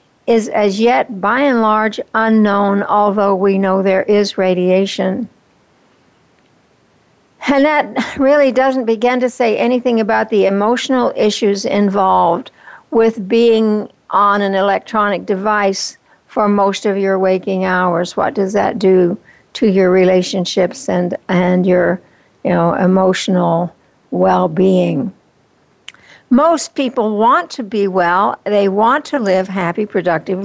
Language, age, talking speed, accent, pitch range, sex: English, 60-79, 125 wpm, American, 190-250 Hz, female